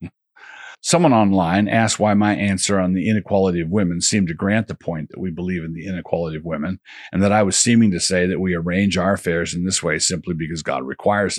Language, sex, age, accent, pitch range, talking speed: English, male, 50-69, American, 90-105 Hz, 225 wpm